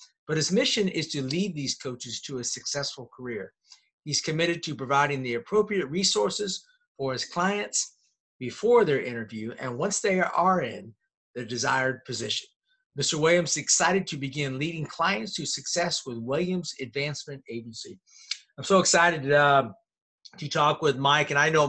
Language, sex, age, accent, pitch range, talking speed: English, male, 50-69, American, 135-165 Hz, 160 wpm